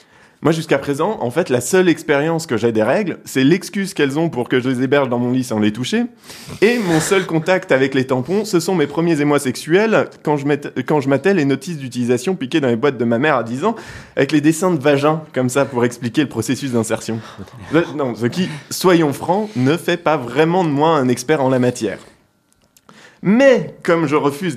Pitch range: 125-175 Hz